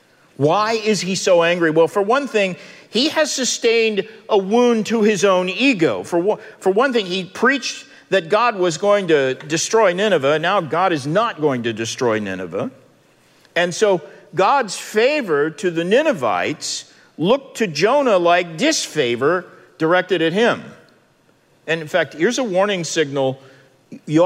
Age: 50-69